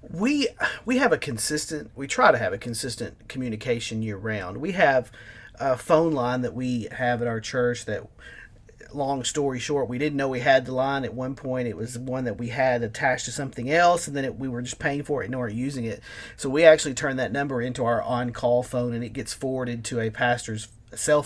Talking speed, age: 230 wpm, 40-59